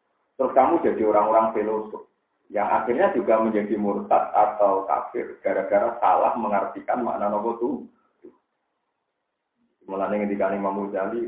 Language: Indonesian